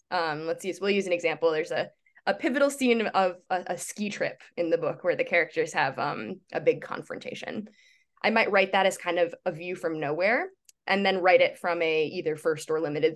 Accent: American